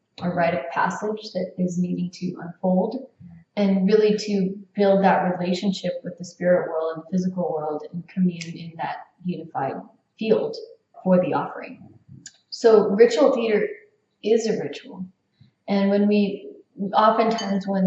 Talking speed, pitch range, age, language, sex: 140 wpm, 180-200 Hz, 20-39, English, female